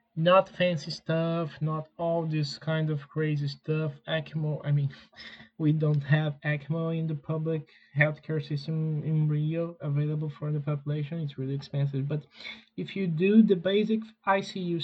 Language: English